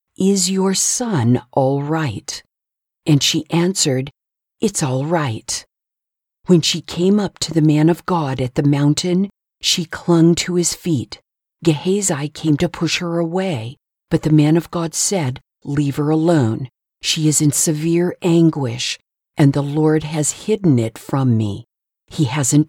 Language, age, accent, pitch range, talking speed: English, 50-69, American, 140-175 Hz, 155 wpm